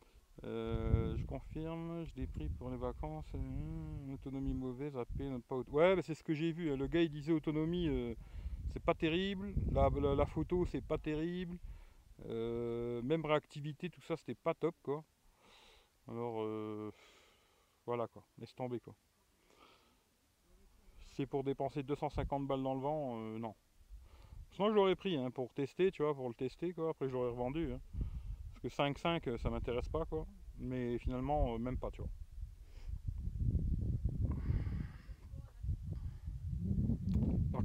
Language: French